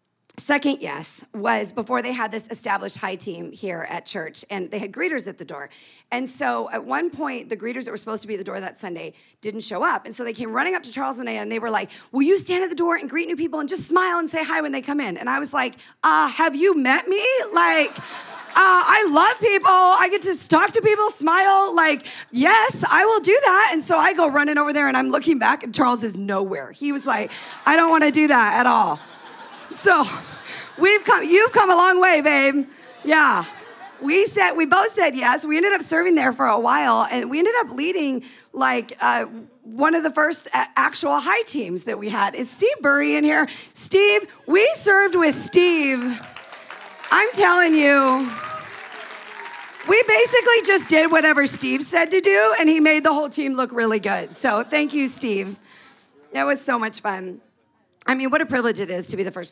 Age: 30-49